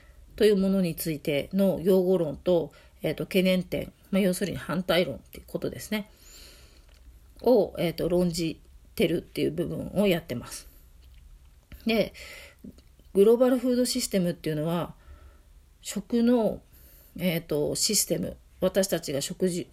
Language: Japanese